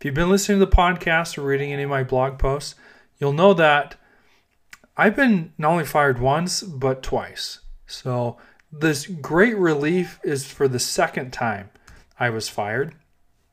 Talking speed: 165 wpm